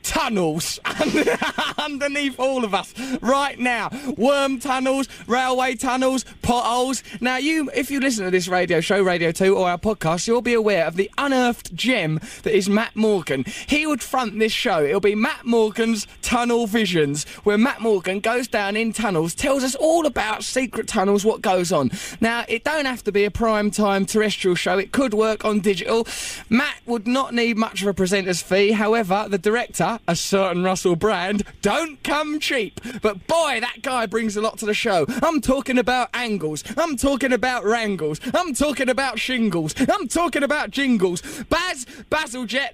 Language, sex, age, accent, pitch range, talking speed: English, male, 20-39, British, 200-260 Hz, 175 wpm